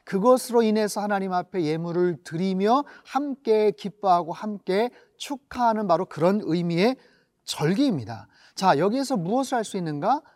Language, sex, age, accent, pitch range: Korean, male, 40-59, native, 185-250 Hz